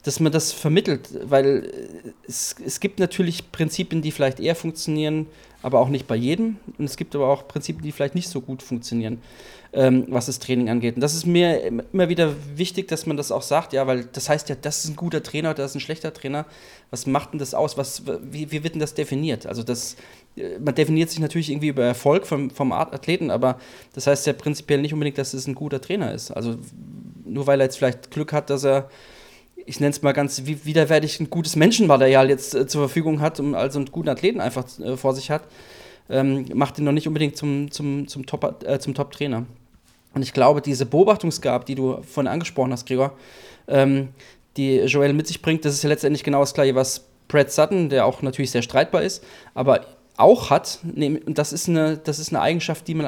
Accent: German